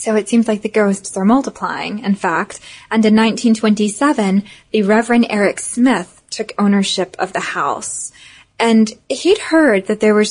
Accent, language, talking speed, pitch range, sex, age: American, English, 165 wpm, 195-240 Hz, female, 10-29